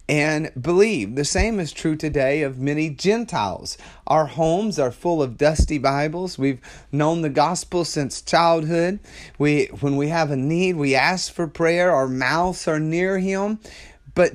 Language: English